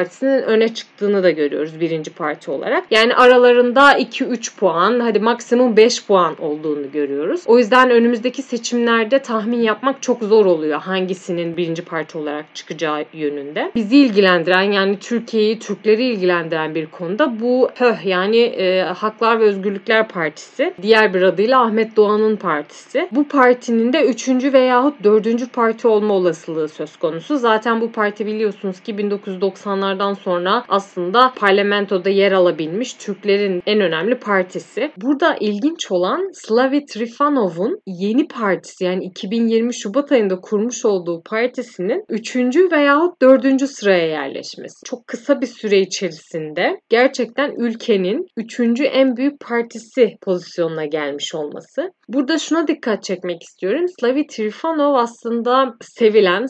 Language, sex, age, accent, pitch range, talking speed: Turkish, female, 30-49, native, 185-245 Hz, 130 wpm